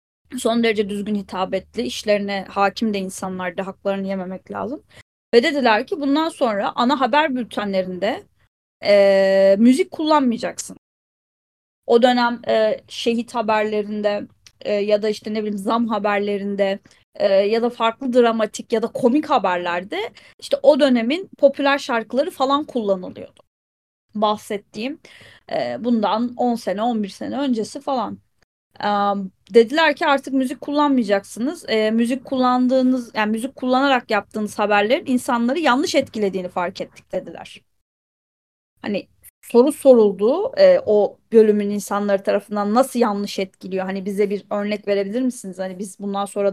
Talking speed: 130 wpm